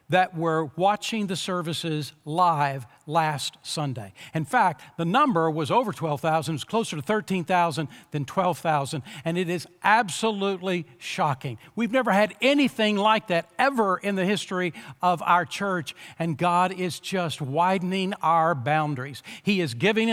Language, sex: English, male